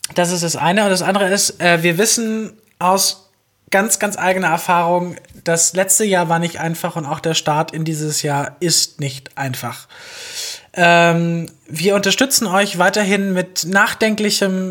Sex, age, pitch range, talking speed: male, 20-39, 160-195 Hz, 160 wpm